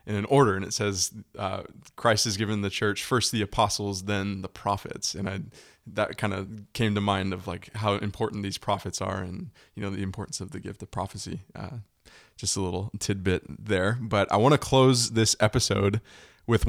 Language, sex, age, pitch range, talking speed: English, male, 20-39, 100-115 Hz, 200 wpm